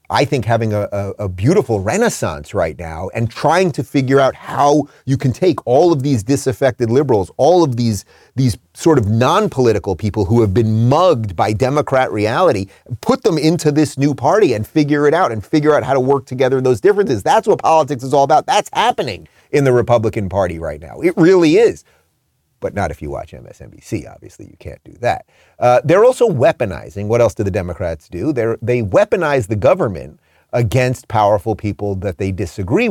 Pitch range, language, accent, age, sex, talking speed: 110-145 Hz, English, American, 30-49, male, 195 wpm